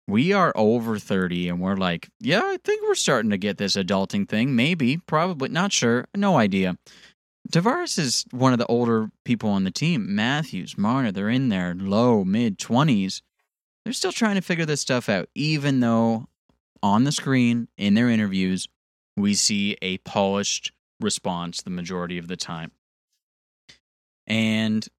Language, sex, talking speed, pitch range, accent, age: English, male, 160 wpm, 90-120 Hz, American, 20-39